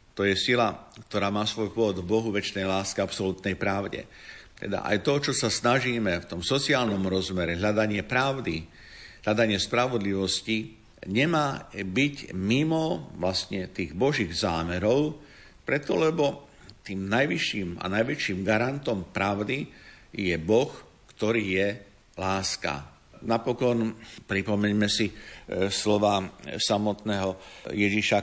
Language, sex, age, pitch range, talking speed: Slovak, male, 50-69, 95-110 Hz, 115 wpm